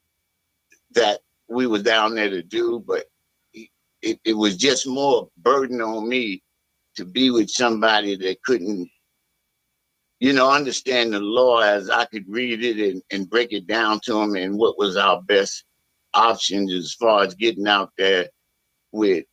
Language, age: English, 60-79